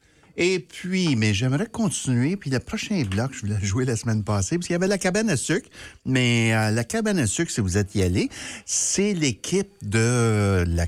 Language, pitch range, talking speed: French, 95-140 Hz, 210 wpm